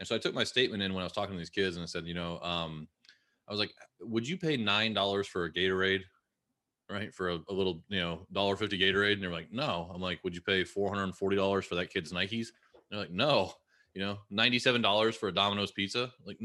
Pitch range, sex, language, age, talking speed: 90-115 Hz, male, English, 20-39, 235 wpm